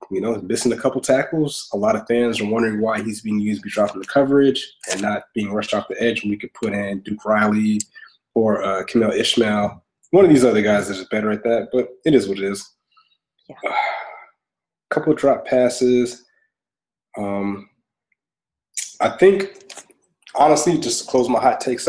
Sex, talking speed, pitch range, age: male, 185 wpm, 105-140 Hz, 20-39